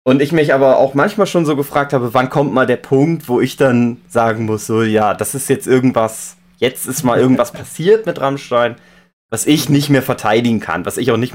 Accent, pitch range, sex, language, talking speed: German, 110-145 Hz, male, German, 225 wpm